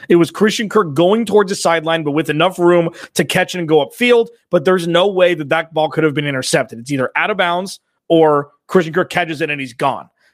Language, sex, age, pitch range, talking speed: English, male, 30-49, 150-190 Hz, 245 wpm